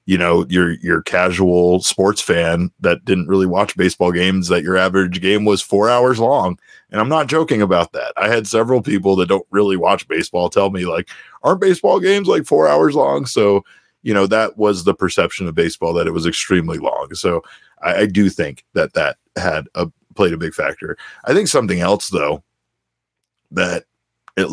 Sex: male